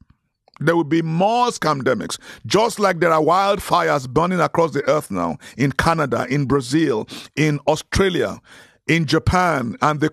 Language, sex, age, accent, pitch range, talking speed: English, male, 50-69, Nigerian, 140-195 Hz, 150 wpm